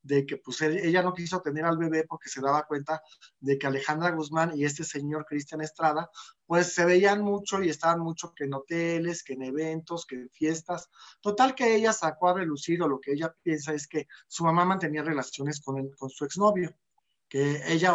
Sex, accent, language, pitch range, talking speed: male, Mexican, Spanish, 150-195 Hz, 205 wpm